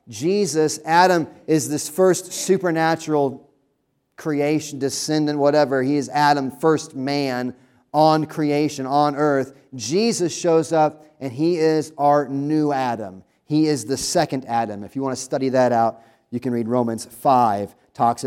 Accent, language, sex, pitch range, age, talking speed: American, English, male, 120-155 Hz, 30-49, 150 wpm